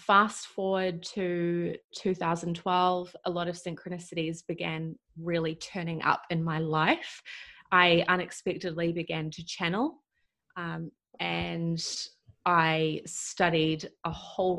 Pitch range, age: 165-185 Hz, 20-39